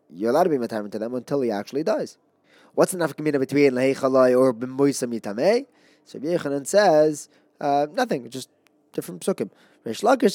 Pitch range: 115-150 Hz